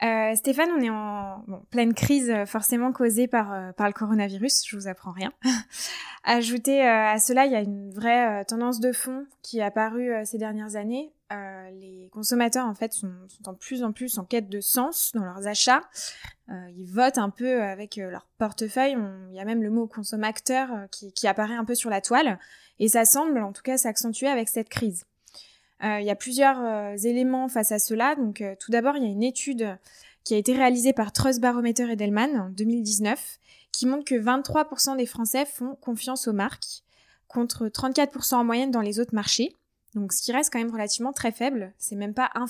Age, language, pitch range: 20-39, French, 210-255 Hz